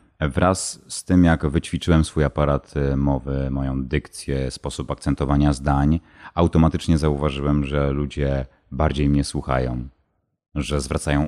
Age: 30-49